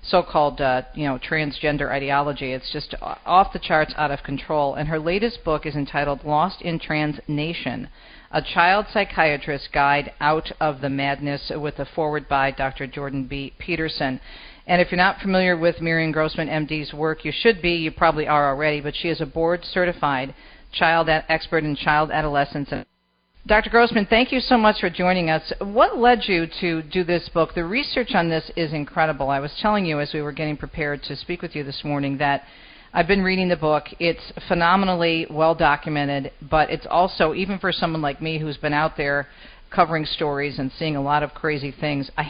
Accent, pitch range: American, 145-175 Hz